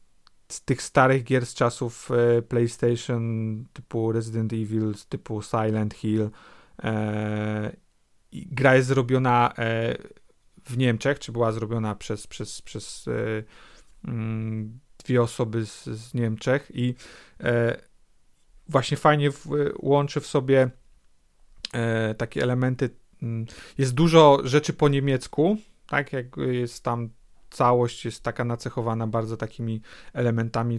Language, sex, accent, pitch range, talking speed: Polish, male, native, 110-130 Hz, 105 wpm